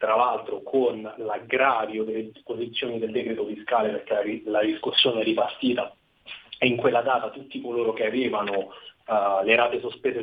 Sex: male